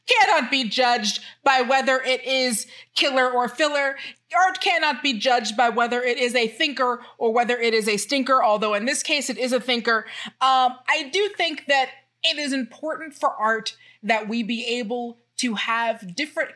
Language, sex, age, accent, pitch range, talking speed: English, female, 30-49, American, 220-275 Hz, 185 wpm